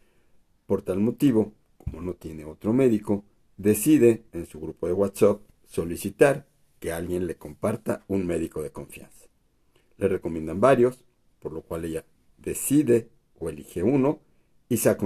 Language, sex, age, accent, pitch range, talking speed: Spanish, male, 50-69, Mexican, 90-125 Hz, 145 wpm